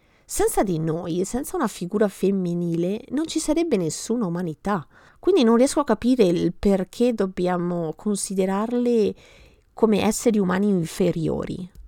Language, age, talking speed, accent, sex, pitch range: Italian, 30-49, 125 wpm, native, female, 180-245 Hz